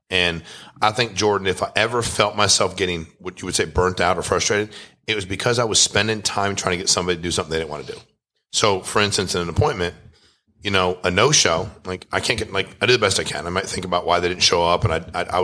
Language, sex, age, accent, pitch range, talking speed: English, male, 40-59, American, 90-110 Hz, 275 wpm